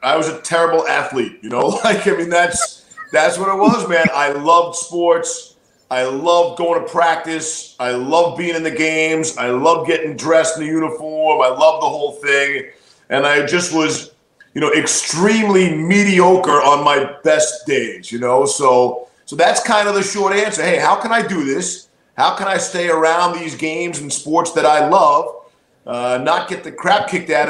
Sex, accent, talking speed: male, American, 195 wpm